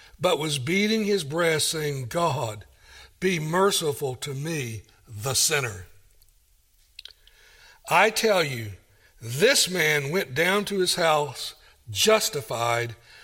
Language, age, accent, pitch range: English, 60-79, American, 130-190 Hz